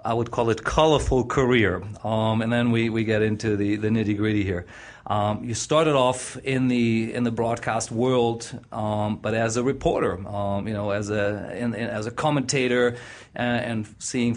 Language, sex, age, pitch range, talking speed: English, male, 40-59, 105-120 Hz, 190 wpm